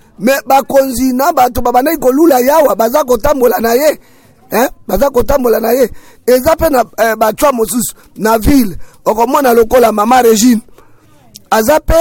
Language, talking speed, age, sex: English, 145 wpm, 50-69, male